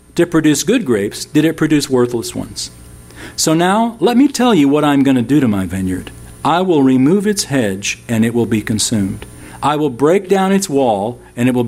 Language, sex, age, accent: English, male, 50-69, American